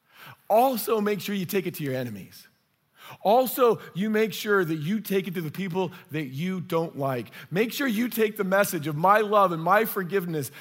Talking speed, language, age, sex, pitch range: 205 wpm, English, 40-59, male, 140-190 Hz